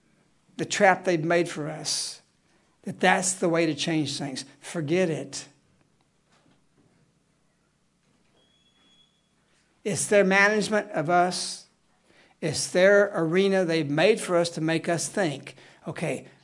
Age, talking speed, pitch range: 60-79, 115 wpm, 160-205 Hz